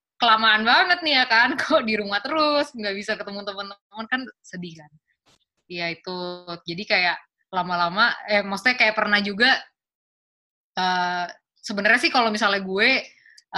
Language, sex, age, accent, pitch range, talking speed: Indonesian, female, 20-39, native, 180-235 Hz, 145 wpm